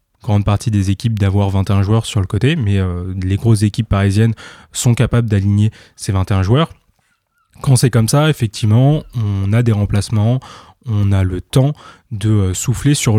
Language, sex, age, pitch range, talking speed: French, male, 20-39, 100-120 Hz, 175 wpm